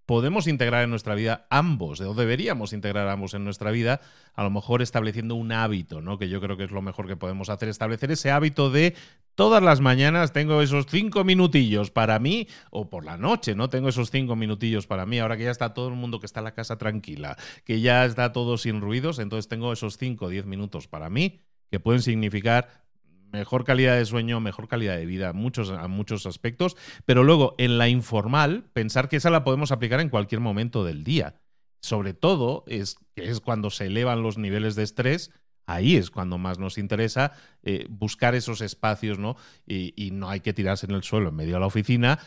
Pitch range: 100-125 Hz